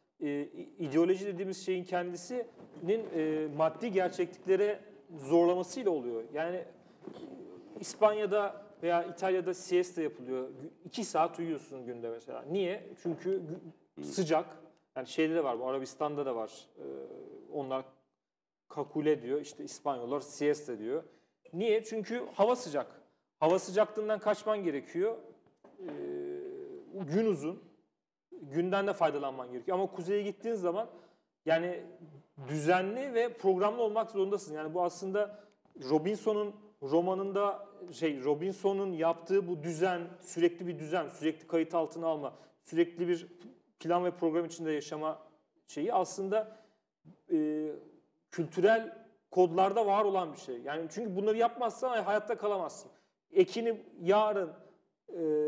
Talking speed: 120 wpm